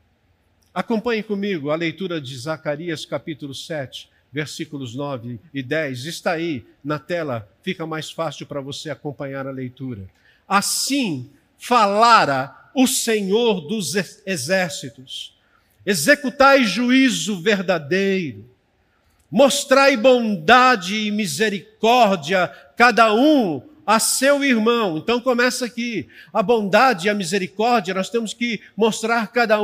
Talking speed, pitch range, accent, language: 110 wpm, 170-265 Hz, Brazilian, Portuguese